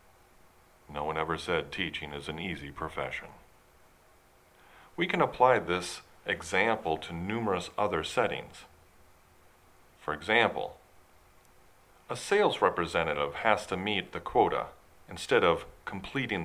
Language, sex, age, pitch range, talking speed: English, male, 40-59, 80-105 Hz, 115 wpm